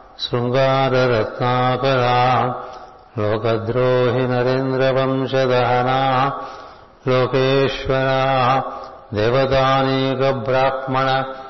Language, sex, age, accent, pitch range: Telugu, male, 60-79, native, 125-135 Hz